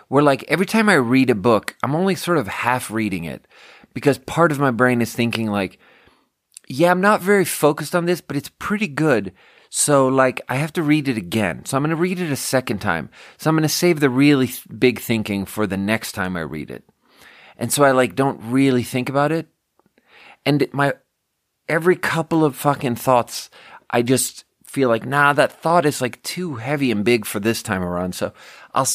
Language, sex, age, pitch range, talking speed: English, male, 30-49, 110-145 Hz, 215 wpm